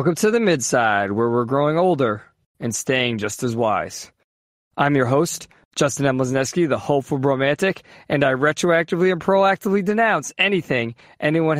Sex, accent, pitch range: male, American, 135-165 Hz